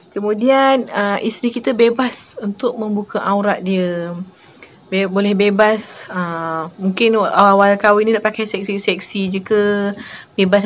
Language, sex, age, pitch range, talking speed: Malay, female, 20-39, 195-220 Hz, 130 wpm